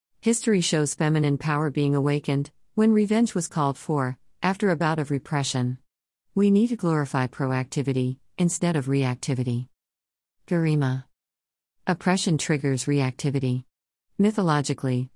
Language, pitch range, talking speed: English, 130-170 Hz, 115 wpm